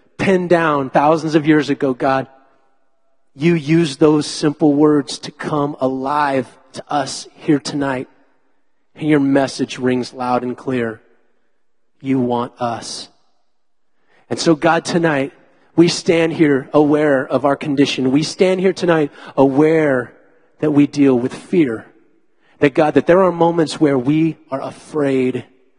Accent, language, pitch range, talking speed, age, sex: American, English, 130-155 Hz, 140 wpm, 30-49, male